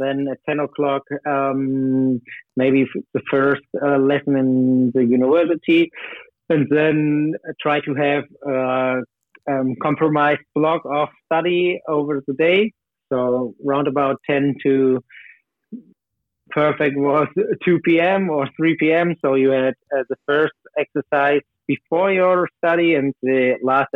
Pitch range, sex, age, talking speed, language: 125-150 Hz, male, 30-49, 130 wpm, Danish